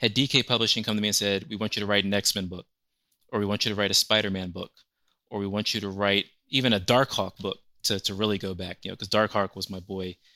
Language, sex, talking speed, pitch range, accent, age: English, male, 285 wpm, 100-115 Hz, American, 30-49